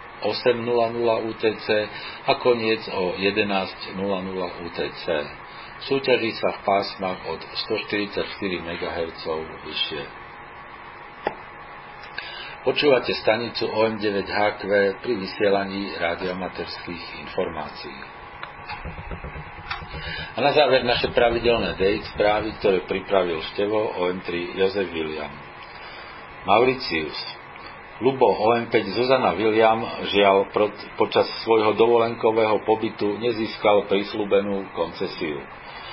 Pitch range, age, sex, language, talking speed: 95-110 Hz, 50-69, male, Slovak, 80 wpm